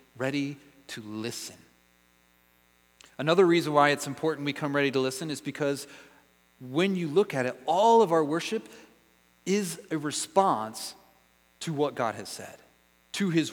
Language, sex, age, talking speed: English, male, 30-49, 150 wpm